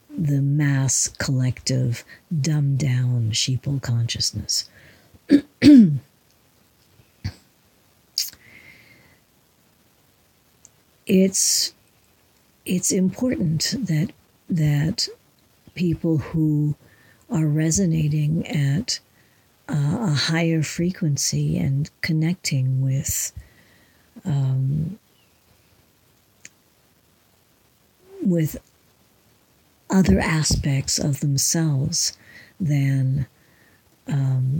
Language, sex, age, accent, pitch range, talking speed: English, female, 60-79, American, 135-165 Hz, 55 wpm